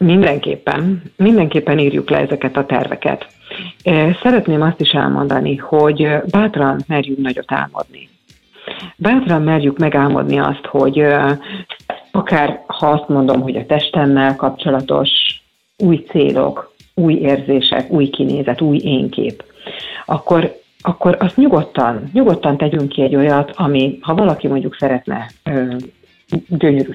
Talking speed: 120 wpm